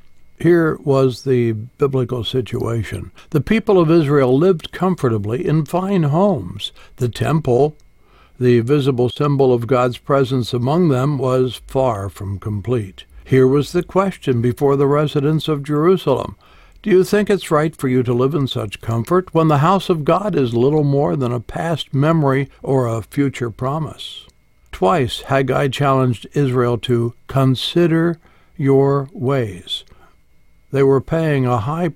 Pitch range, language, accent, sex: 125-165 Hz, English, American, male